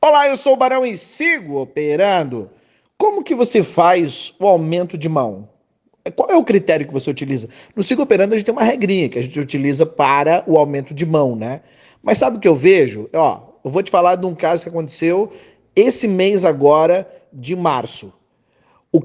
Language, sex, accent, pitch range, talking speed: Portuguese, male, Brazilian, 160-230 Hz, 195 wpm